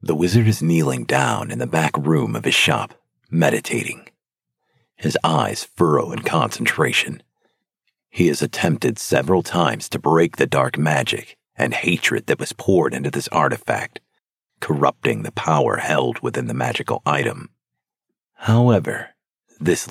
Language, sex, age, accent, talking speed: English, male, 40-59, American, 140 wpm